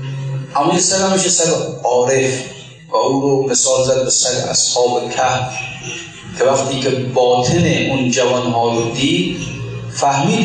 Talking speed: 110 wpm